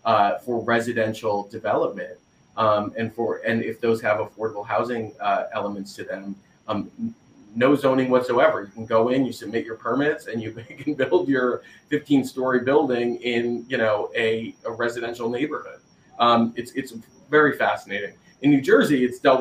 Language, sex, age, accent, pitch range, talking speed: English, male, 30-49, American, 110-125 Hz, 165 wpm